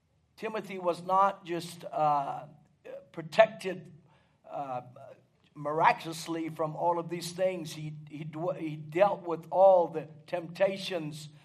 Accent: American